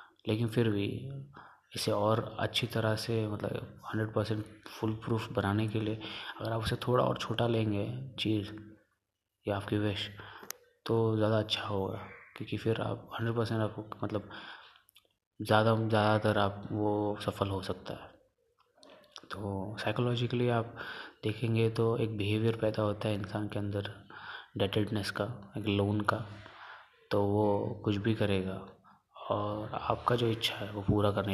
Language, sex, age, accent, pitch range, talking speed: Hindi, male, 20-39, native, 100-115 Hz, 145 wpm